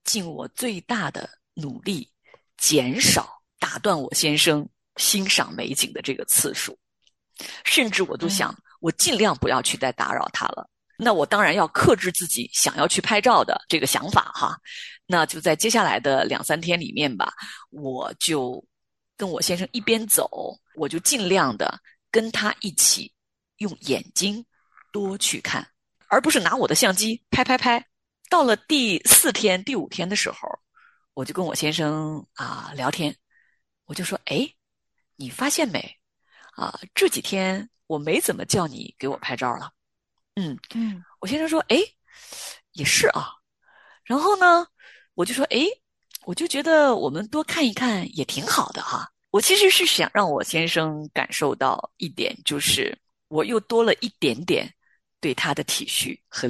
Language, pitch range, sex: Chinese, 175-280 Hz, female